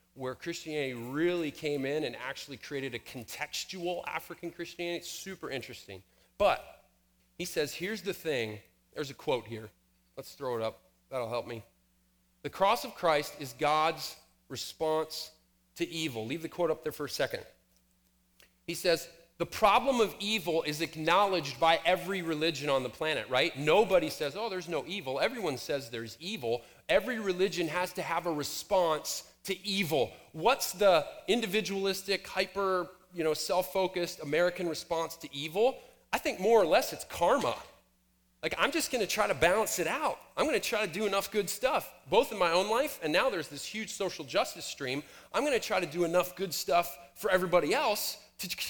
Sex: male